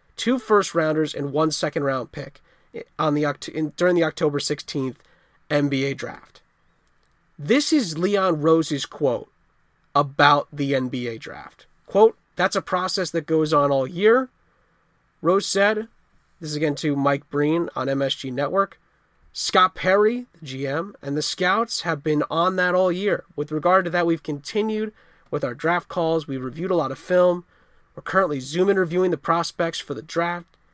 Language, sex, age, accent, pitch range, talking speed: English, male, 30-49, American, 145-185 Hz, 160 wpm